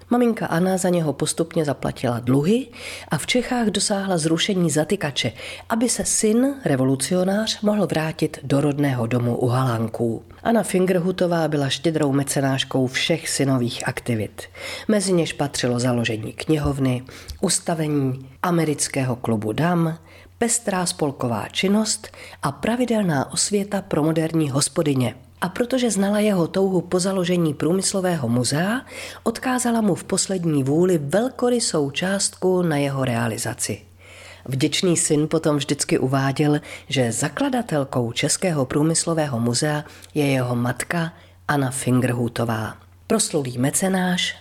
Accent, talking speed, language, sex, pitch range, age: native, 115 wpm, Czech, female, 130-190 Hz, 40-59